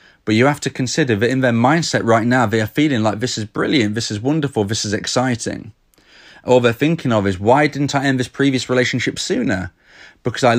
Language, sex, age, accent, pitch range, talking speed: English, male, 30-49, British, 115-140 Hz, 220 wpm